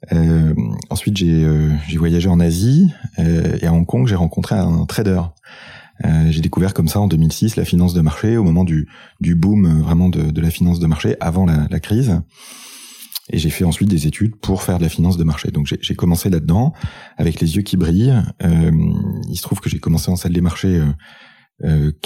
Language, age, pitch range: French, 30-49, 80-100 Hz